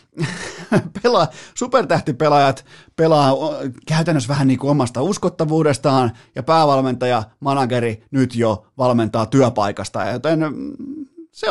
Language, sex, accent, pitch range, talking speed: Finnish, male, native, 125-165 Hz, 95 wpm